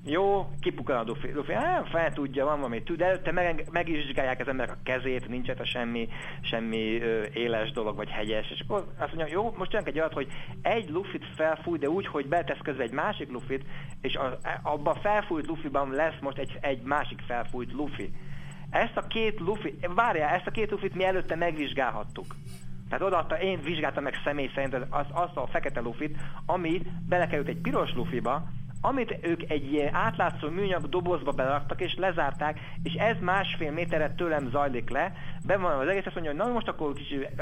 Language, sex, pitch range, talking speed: Hungarian, male, 135-175 Hz, 190 wpm